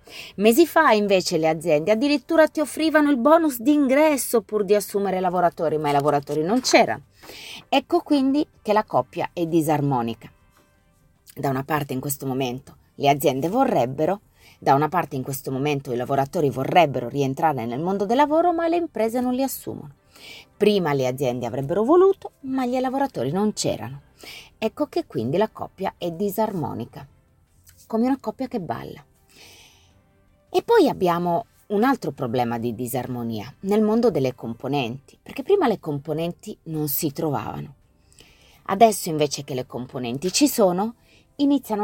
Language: Italian